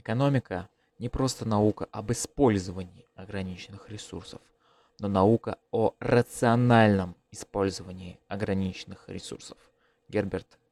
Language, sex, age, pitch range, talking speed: Russian, male, 20-39, 100-120 Hz, 90 wpm